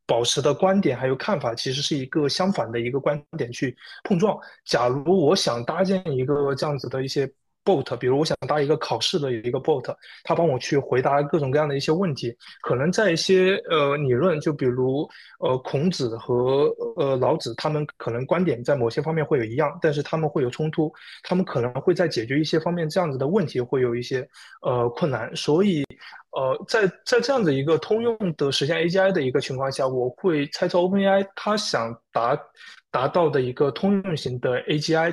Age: 20-39